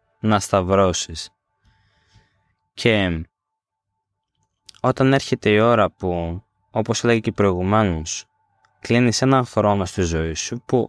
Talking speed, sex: 105 wpm, male